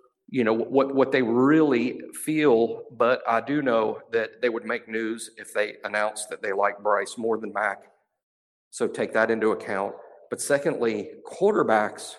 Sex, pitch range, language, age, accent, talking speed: male, 110-155 Hz, English, 50-69, American, 165 wpm